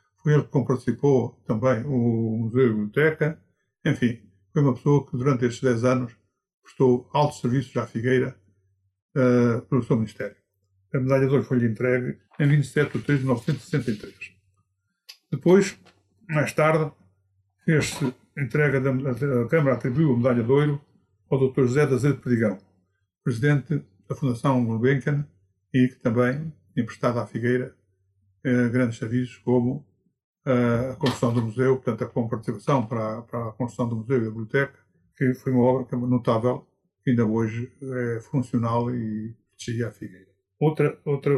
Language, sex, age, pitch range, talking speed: Portuguese, male, 50-69, 115-140 Hz, 155 wpm